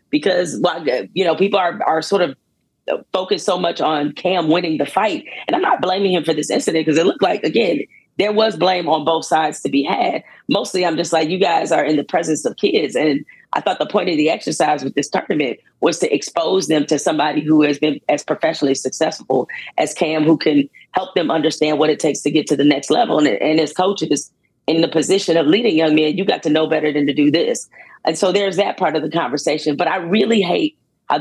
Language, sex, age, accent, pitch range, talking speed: English, female, 40-59, American, 150-180 Hz, 235 wpm